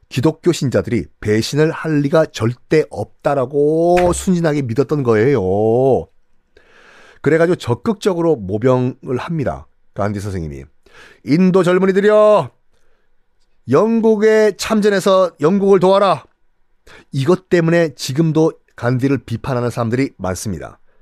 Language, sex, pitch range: Korean, male, 125-185 Hz